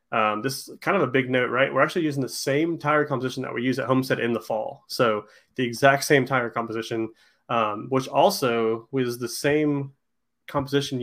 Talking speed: 200 wpm